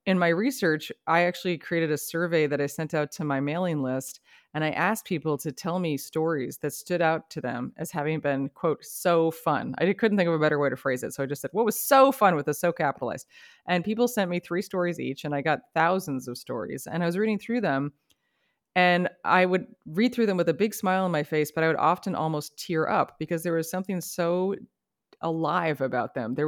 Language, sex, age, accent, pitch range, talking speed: English, female, 30-49, American, 150-185 Hz, 240 wpm